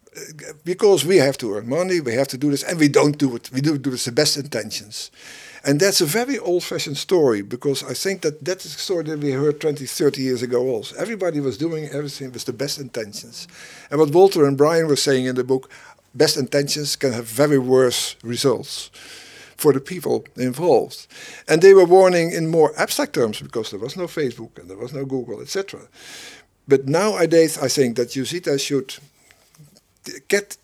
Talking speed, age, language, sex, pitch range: 200 wpm, 50-69, English, male, 130-165 Hz